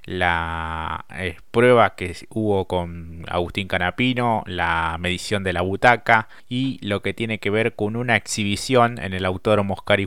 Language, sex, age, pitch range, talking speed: Spanish, male, 20-39, 95-115 Hz, 155 wpm